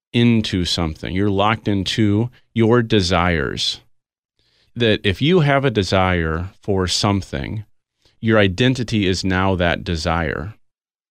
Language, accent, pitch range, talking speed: English, American, 90-120 Hz, 115 wpm